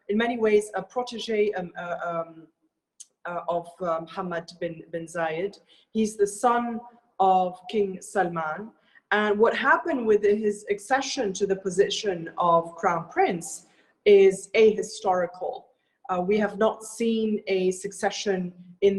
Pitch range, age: 175-210 Hz, 30-49